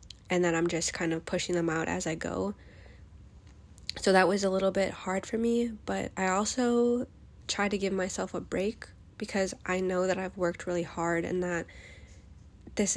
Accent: American